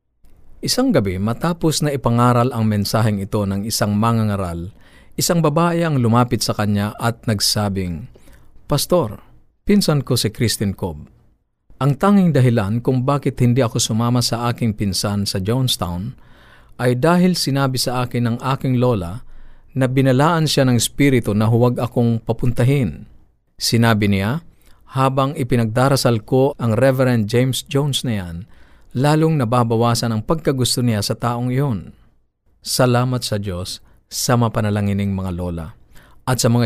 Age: 50-69